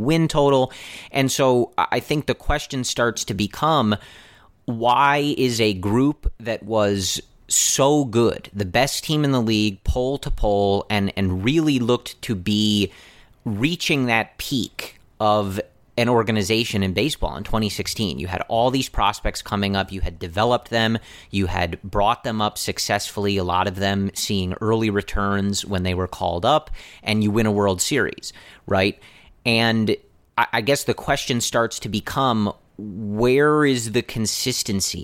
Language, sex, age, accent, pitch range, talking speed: English, male, 30-49, American, 100-125 Hz, 160 wpm